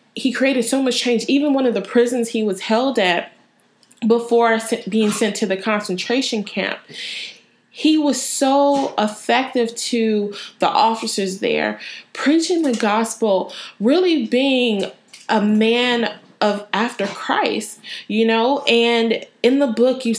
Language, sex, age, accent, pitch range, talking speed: English, female, 20-39, American, 195-245 Hz, 135 wpm